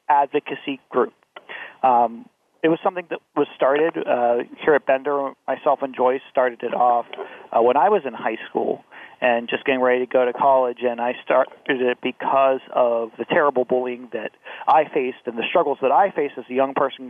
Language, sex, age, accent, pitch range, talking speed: English, male, 30-49, American, 120-145 Hz, 195 wpm